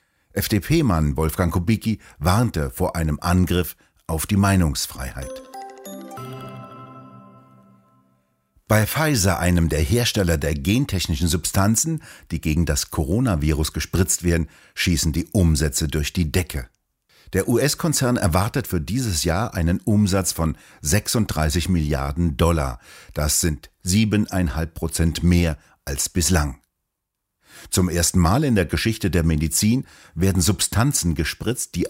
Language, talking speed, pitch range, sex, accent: German, 115 wpm, 80-105 Hz, male, German